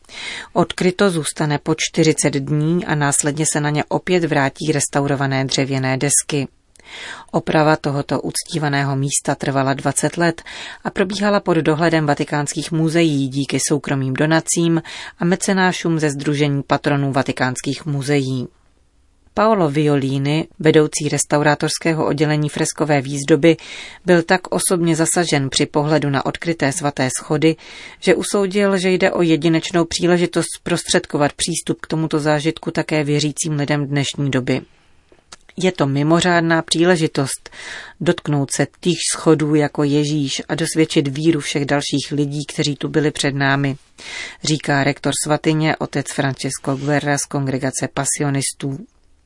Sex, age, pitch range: female, 30-49, 140-165 Hz